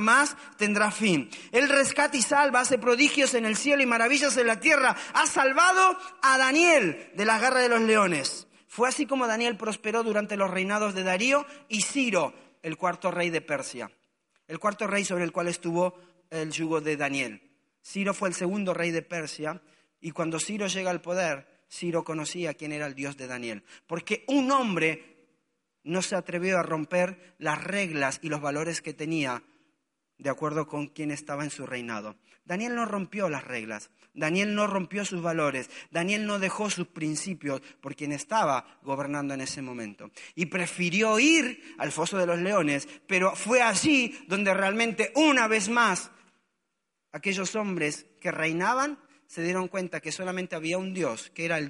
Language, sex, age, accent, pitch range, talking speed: Spanish, male, 40-59, Argentinian, 160-230 Hz, 175 wpm